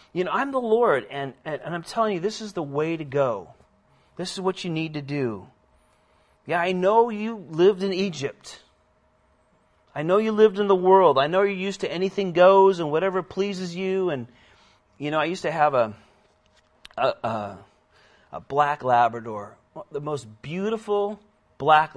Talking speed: 180 wpm